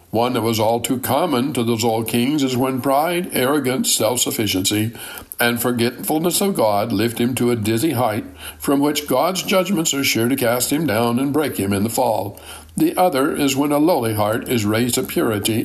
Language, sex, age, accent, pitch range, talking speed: English, male, 60-79, American, 110-145 Hz, 200 wpm